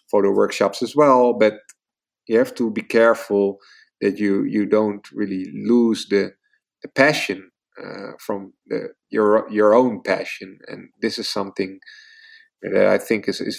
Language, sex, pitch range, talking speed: English, male, 105-150 Hz, 155 wpm